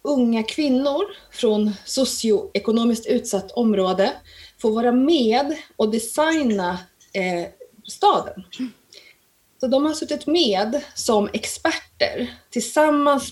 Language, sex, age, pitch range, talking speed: Swedish, female, 30-49, 200-280 Hz, 90 wpm